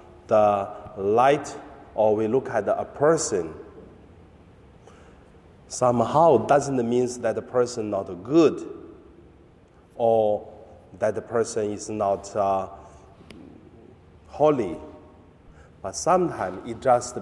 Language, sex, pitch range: Chinese, male, 95-140 Hz